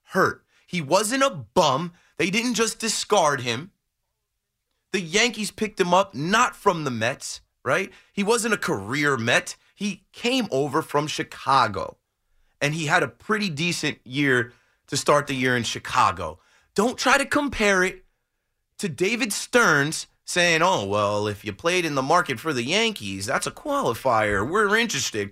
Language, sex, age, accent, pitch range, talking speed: English, male, 30-49, American, 130-205 Hz, 160 wpm